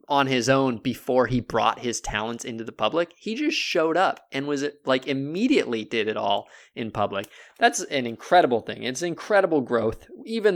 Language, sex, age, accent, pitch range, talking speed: English, male, 20-39, American, 105-140 Hz, 190 wpm